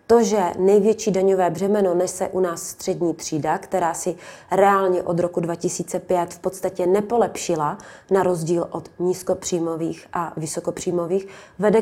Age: 20-39